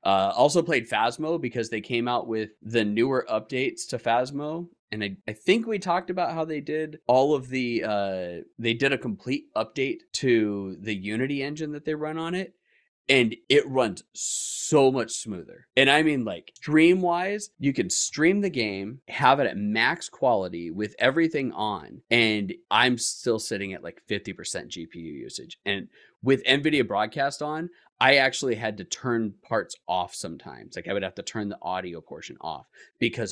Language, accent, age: English, American, 30-49